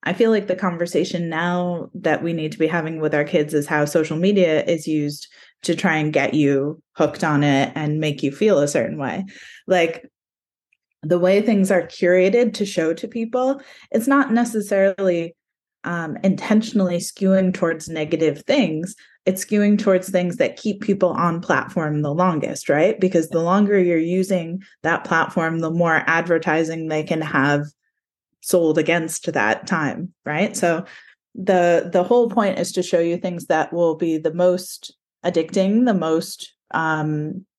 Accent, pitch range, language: American, 160-195 Hz, English